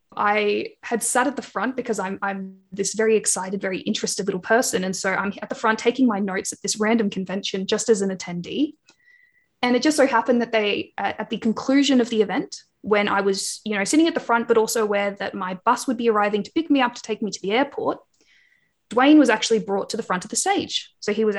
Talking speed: 245 wpm